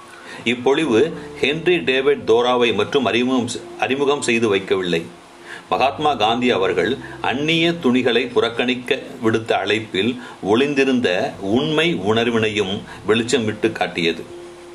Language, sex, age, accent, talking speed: Tamil, male, 40-59, native, 90 wpm